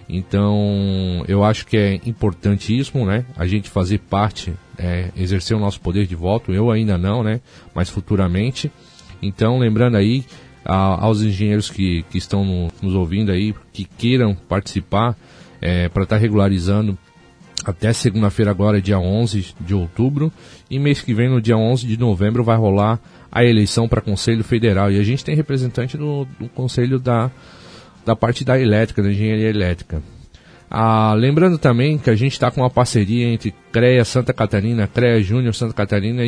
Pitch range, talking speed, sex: 100-125 Hz, 160 wpm, male